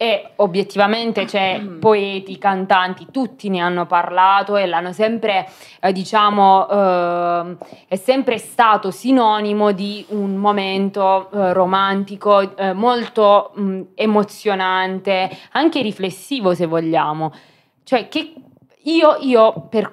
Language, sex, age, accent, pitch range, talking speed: Italian, female, 20-39, native, 185-215 Hz, 115 wpm